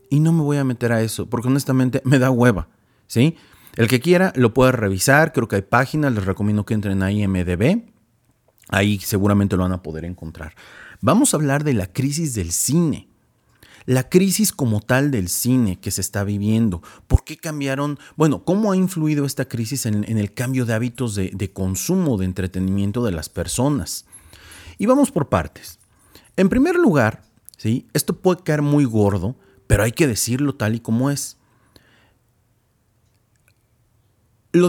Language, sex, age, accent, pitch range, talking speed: Spanish, male, 40-59, Mexican, 100-140 Hz, 170 wpm